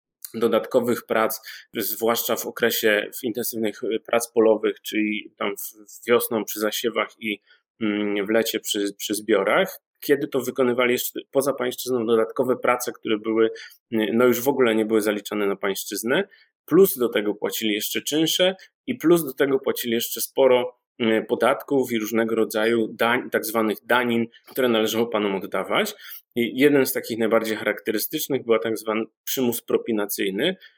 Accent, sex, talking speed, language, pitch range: native, male, 145 wpm, Polish, 110-125 Hz